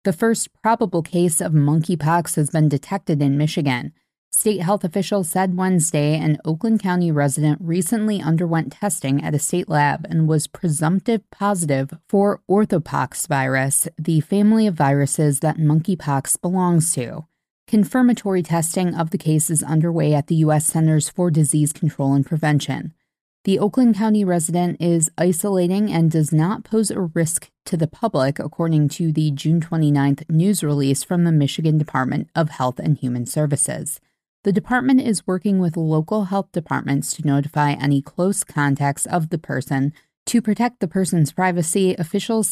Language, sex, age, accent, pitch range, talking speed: English, female, 20-39, American, 150-190 Hz, 155 wpm